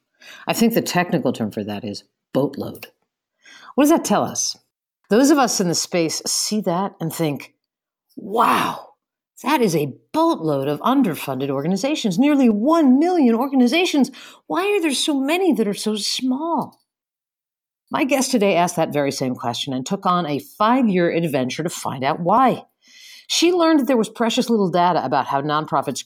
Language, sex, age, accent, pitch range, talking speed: English, female, 50-69, American, 160-245 Hz, 170 wpm